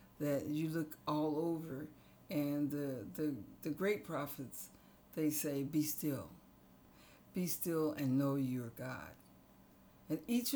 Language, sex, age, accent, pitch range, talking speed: English, female, 60-79, American, 135-155 Hz, 130 wpm